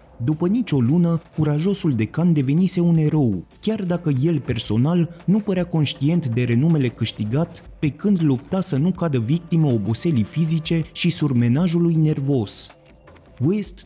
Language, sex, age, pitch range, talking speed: Romanian, male, 30-49, 130-170 Hz, 135 wpm